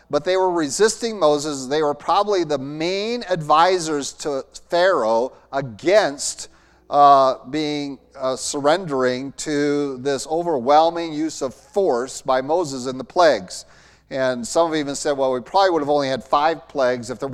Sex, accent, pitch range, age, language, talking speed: male, American, 135-170 Hz, 40-59, English, 155 wpm